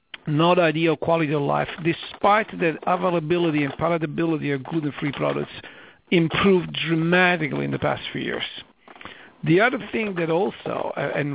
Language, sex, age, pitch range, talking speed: English, male, 60-79, 150-175 Hz, 135 wpm